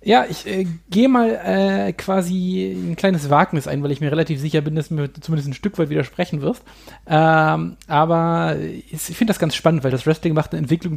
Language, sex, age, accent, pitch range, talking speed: German, male, 30-49, German, 140-170 Hz, 215 wpm